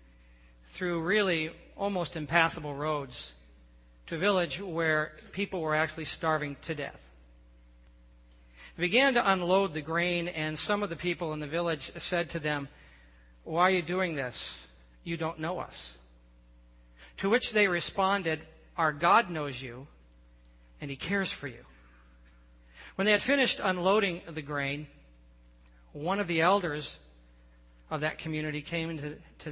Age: 40-59